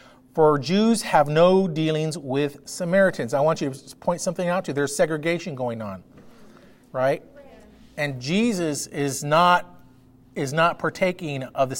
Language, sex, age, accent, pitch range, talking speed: English, male, 40-59, American, 135-185 Hz, 155 wpm